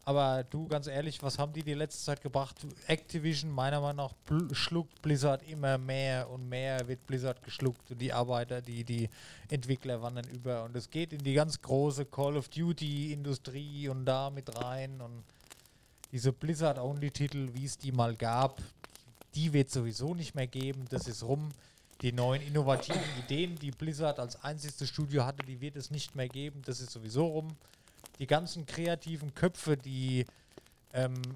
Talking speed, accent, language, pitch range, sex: 170 wpm, German, German, 125-150 Hz, male